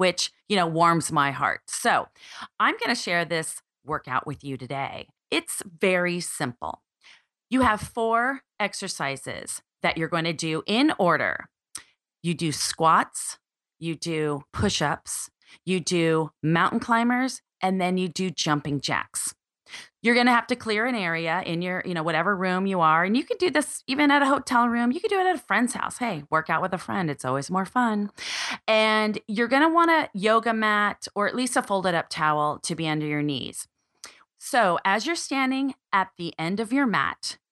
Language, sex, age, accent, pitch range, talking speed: English, female, 30-49, American, 165-235 Hz, 190 wpm